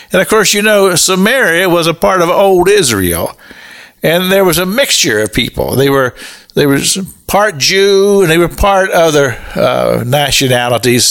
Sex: male